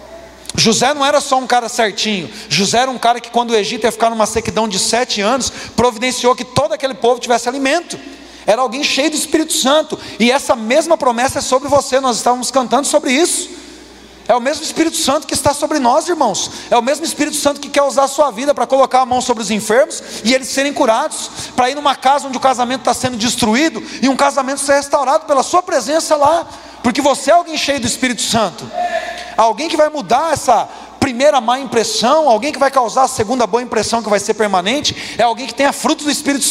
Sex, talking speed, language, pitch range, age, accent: male, 220 wpm, Portuguese, 240-295 Hz, 40-59, Brazilian